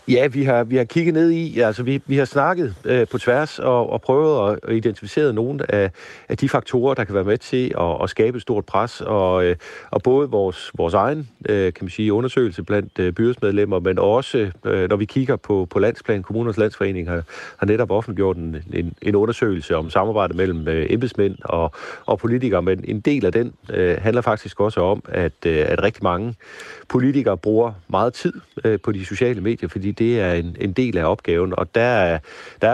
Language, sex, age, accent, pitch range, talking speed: Danish, male, 40-59, native, 90-125 Hz, 205 wpm